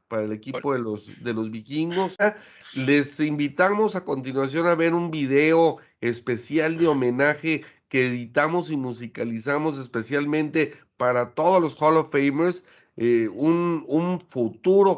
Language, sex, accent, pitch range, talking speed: Spanish, male, Mexican, 125-160 Hz, 130 wpm